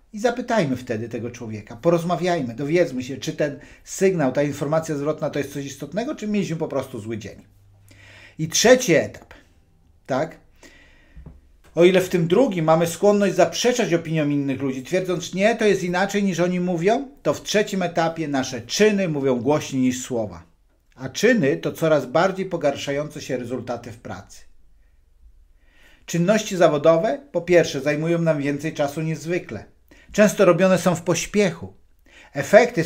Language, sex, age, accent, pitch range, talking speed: Polish, male, 50-69, native, 130-180 Hz, 150 wpm